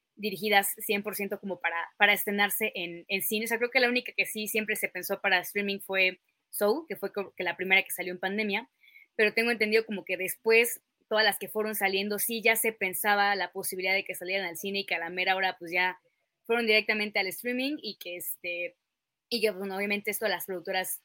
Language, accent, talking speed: Spanish, Mexican, 225 wpm